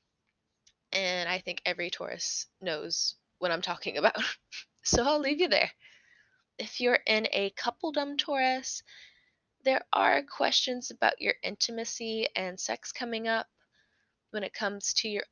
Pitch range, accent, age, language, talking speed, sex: 205-270 Hz, American, 20-39, English, 140 wpm, female